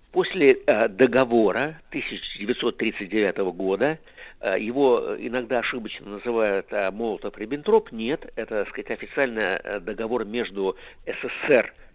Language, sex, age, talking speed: Russian, male, 60-79, 80 wpm